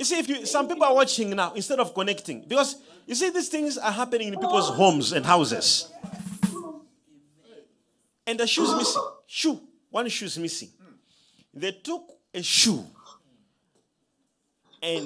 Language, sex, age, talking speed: English, male, 40-59, 150 wpm